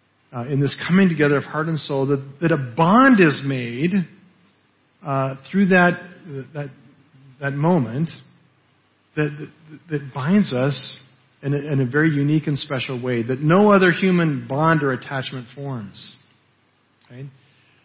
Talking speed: 150 wpm